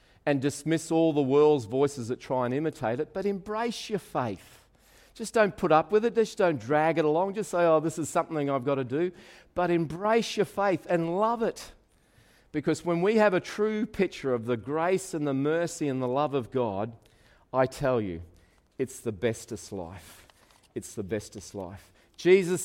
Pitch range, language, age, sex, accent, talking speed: 120-170 Hz, English, 40-59, male, Australian, 195 wpm